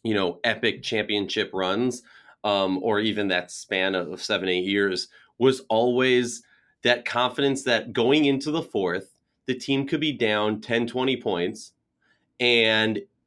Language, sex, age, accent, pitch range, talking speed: English, male, 30-49, American, 105-130 Hz, 145 wpm